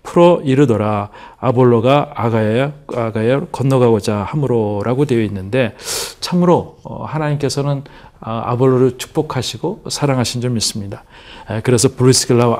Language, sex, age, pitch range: Korean, male, 40-59, 115-150 Hz